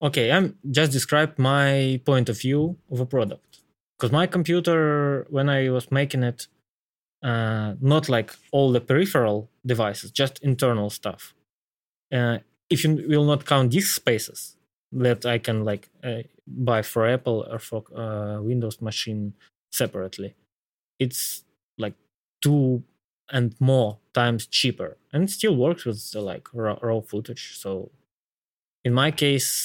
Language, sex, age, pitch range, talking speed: Russian, male, 20-39, 105-135 Hz, 145 wpm